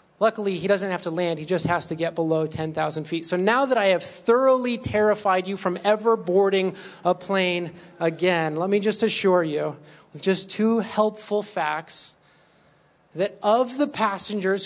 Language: English